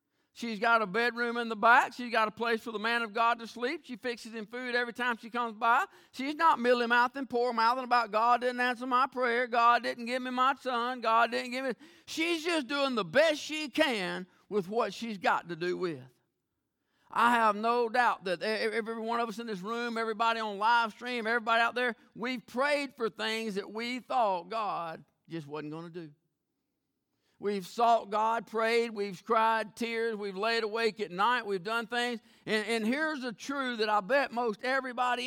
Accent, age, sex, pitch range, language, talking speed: American, 50-69, male, 220-255 Hz, English, 200 wpm